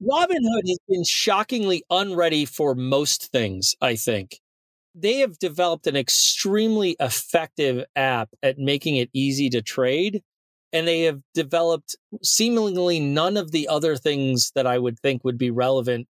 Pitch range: 135-185 Hz